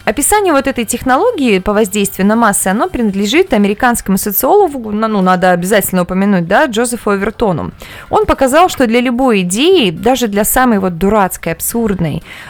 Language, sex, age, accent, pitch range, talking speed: Russian, female, 20-39, native, 200-280 Hz, 155 wpm